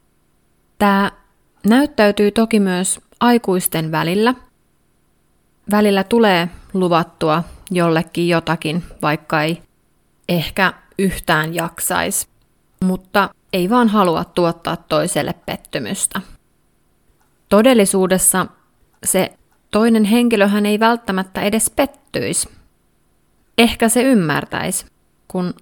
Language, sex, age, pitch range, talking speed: Finnish, female, 20-39, 165-210 Hz, 80 wpm